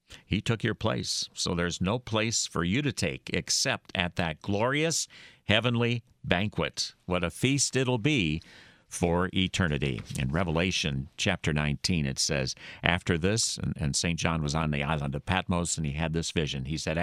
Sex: male